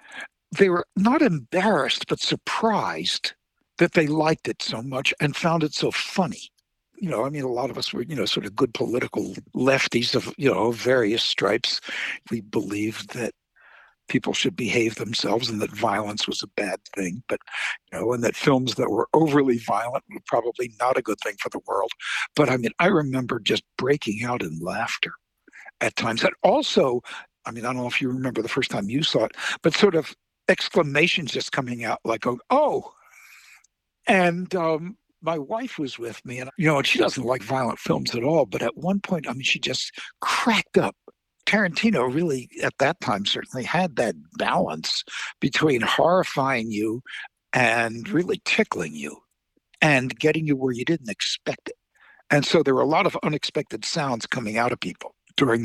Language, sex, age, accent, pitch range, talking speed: English, male, 60-79, American, 120-175 Hz, 185 wpm